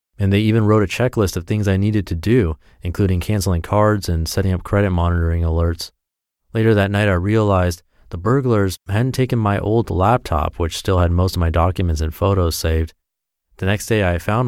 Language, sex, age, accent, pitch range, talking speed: English, male, 30-49, American, 85-115 Hz, 200 wpm